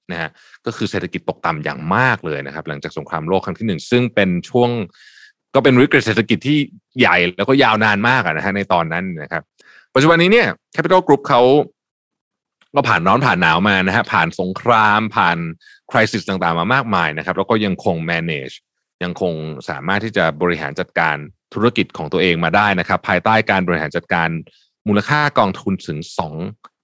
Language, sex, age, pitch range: Thai, male, 20-39, 90-120 Hz